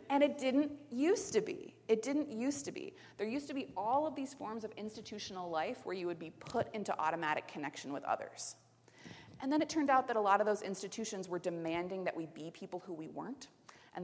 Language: English